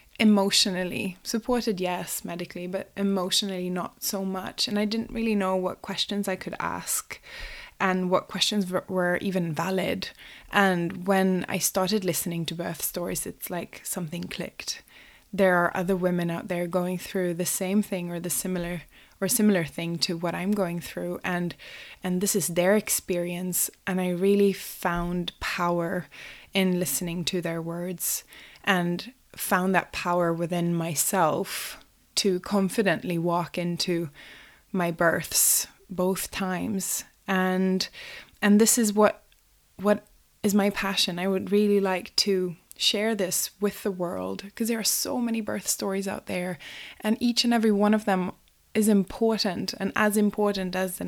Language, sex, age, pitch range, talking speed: English, female, 20-39, 175-205 Hz, 155 wpm